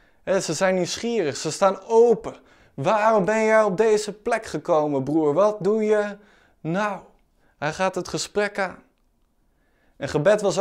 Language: Dutch